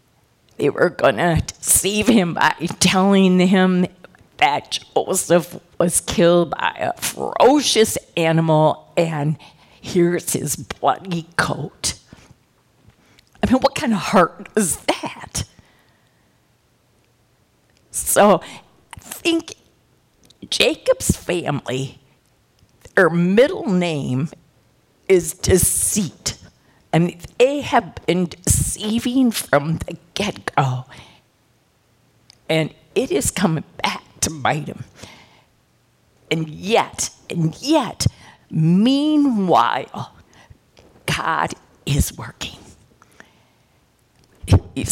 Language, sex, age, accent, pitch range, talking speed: English, female, 50-69, American, 150-205 Hz, 85 wpm